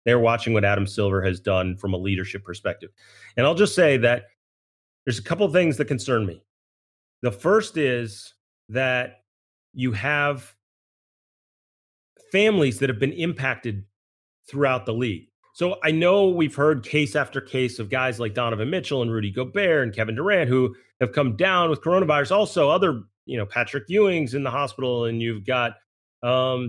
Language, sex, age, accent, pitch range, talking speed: English, male, 30-49, American, 110-150 Hz, 170 wpm